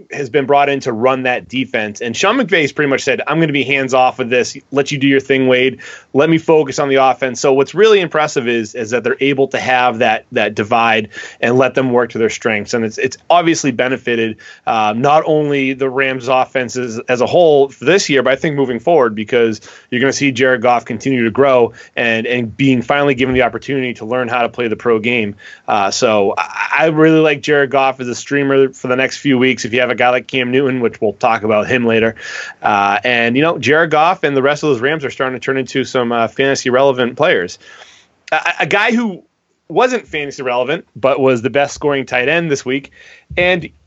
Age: 30-49